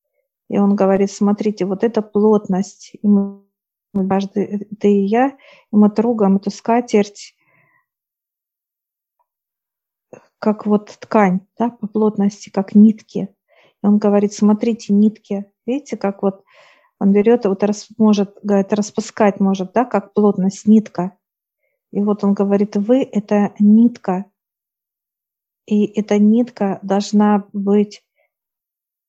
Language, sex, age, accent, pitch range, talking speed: Russian, female, 50-69, native, 200-220 Hz, 120 wpm